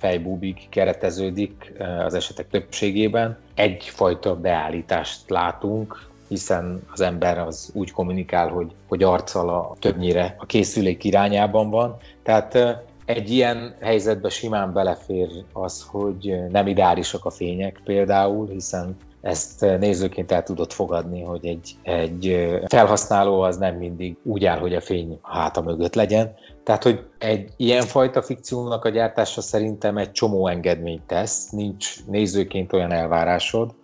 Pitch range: 90-110 Hz